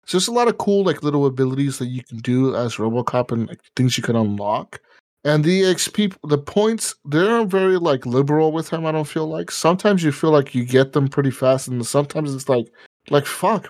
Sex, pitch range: male, 120-155 Hz